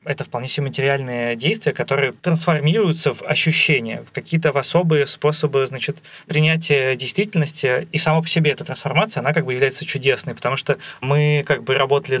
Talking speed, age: 165 wpm, 20-39